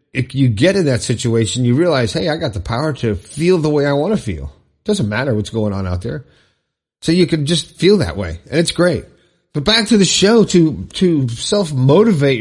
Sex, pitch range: male, 115-155 Hz